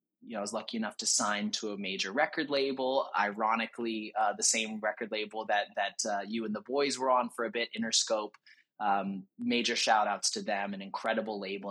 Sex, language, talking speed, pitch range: male, English, 210 wpm, 105-150 Hz